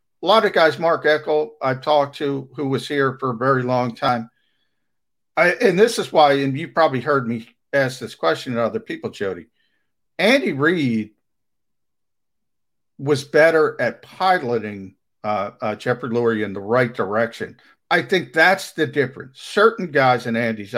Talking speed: 165 wpm